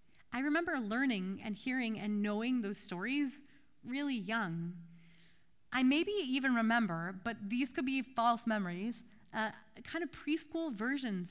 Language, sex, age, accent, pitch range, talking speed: English, female, 30-49, American, 210-275 Hz, 140 wpm